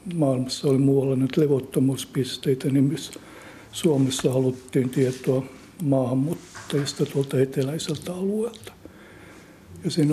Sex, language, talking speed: male, Finnish, 95 wpm